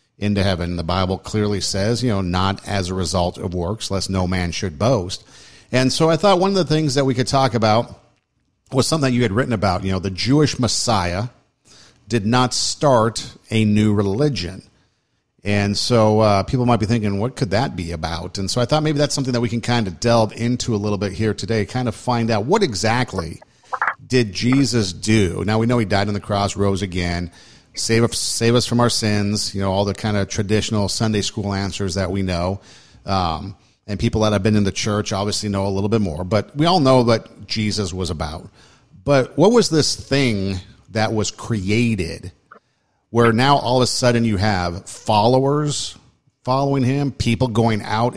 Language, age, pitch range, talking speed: English, 50-69, 100-125 Hz, 205 wpm